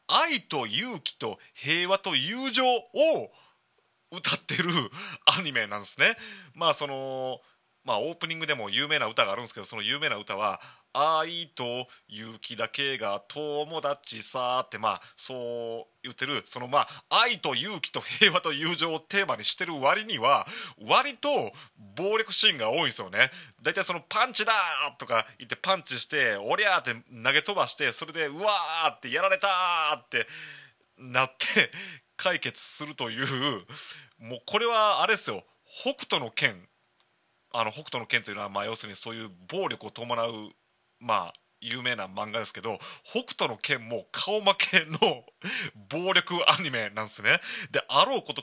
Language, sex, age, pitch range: Japanese, male, 30-49, 115-170 Hz